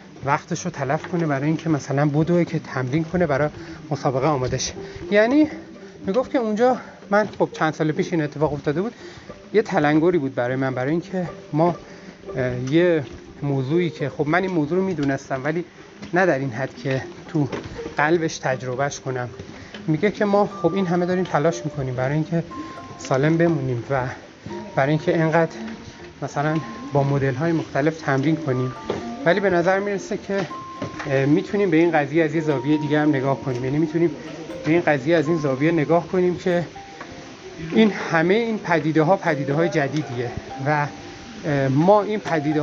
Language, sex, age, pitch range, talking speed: Persian, male, 30-49, 145-185 Hz, 160 wpm